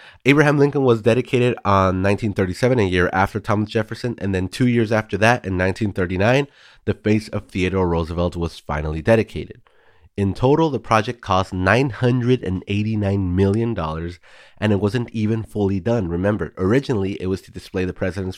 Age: 30-49